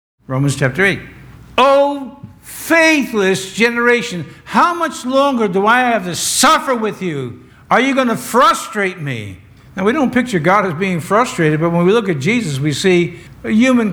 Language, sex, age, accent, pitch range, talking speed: English, male, 60-79, American, 180-270 Hz, 170 wpm